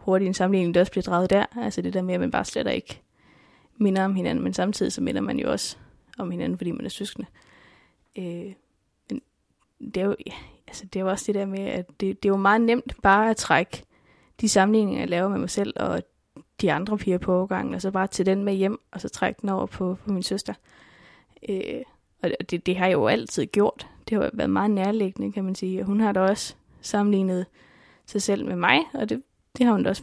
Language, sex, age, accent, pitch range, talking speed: Danish, female, 20-39, native, 190-220 Hz, 240 wpm